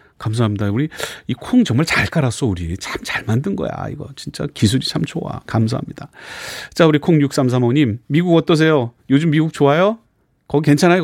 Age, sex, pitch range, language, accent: 30-49, male, 110-170 Hz, Korean, native